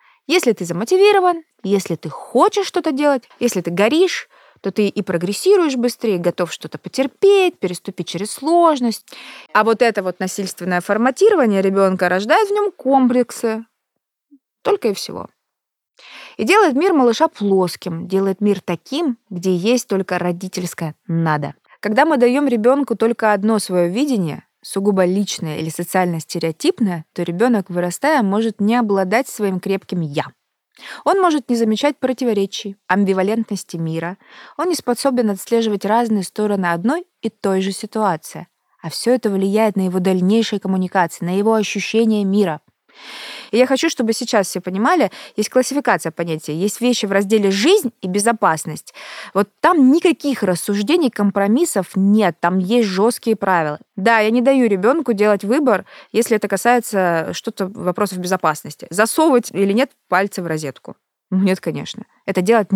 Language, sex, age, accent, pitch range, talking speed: Russian, female, 20-39, native, 185-245 Hz, 145 wpm